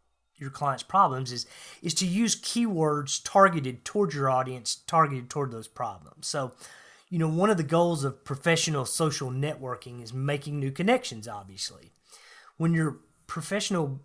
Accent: American